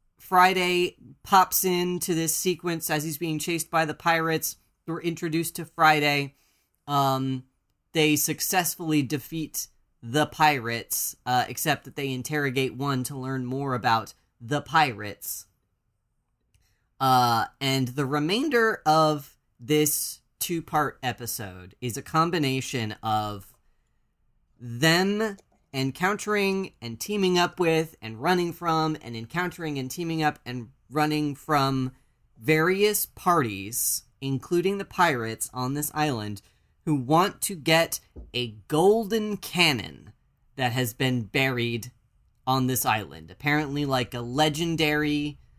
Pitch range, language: 125-160 Hz, English